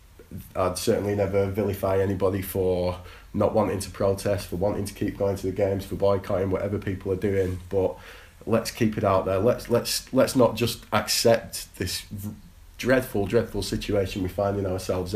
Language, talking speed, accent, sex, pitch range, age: English, 170 wpm, British, male, 90-105 Hz, 20-39